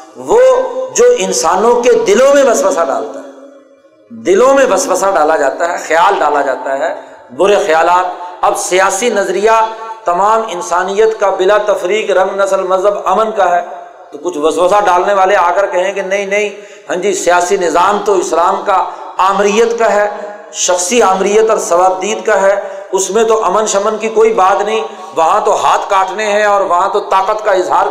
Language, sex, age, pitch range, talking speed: Urdu, male, 50-69, 190-220 Hz, 175 wpm